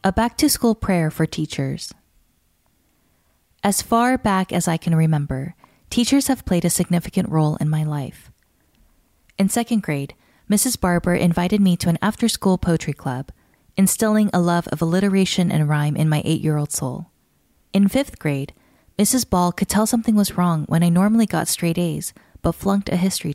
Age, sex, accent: 20-39, female, American